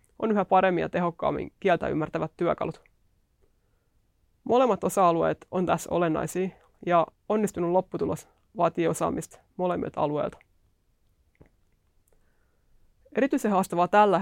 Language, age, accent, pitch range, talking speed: Finnish, 20-39, native, 170-195 Hz, 95 wpm